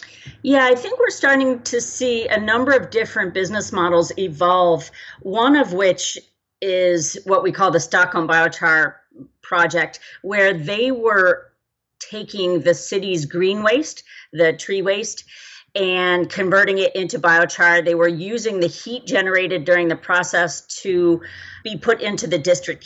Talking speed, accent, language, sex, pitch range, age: 145 wpm, American, English, female, 170-195 Hz, 40-59